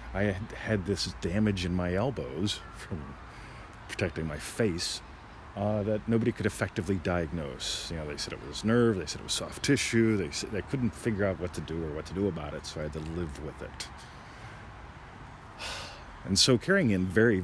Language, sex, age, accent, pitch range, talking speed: English, male, 40-59, American, 85-105 Hz, 195 wpm